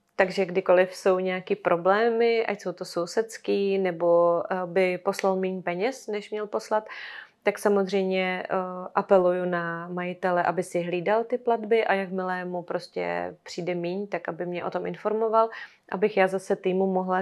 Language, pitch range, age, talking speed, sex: Czech, 180-205 Hz, 30-49, 155 wpm, female